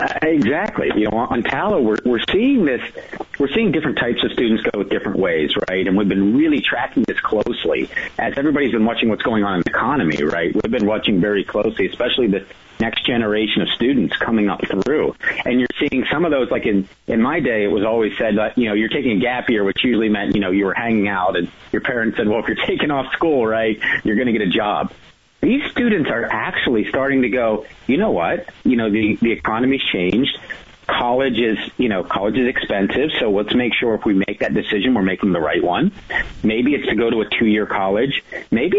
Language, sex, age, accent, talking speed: English, male, 40-59, American, 225 wpm